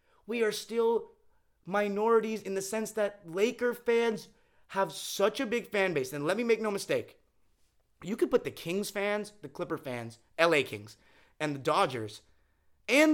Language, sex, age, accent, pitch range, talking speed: English, male, 30-49, American, 160-230 Hz, 170 wpm